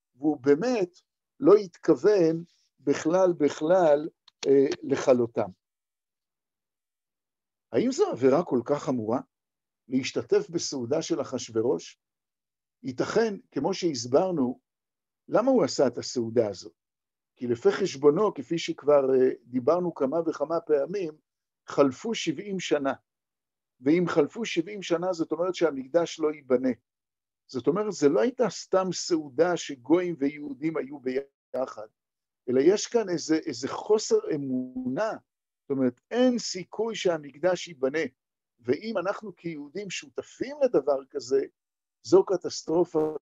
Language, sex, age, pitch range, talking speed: Hebrew, male, 50-69, 130-180 Hz, 110 wpm